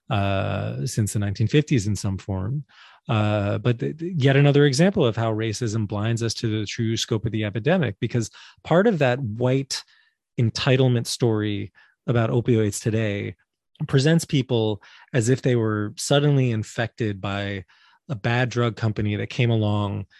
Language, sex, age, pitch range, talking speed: English, male, 20-39, 105-130 Hz, 150 wpm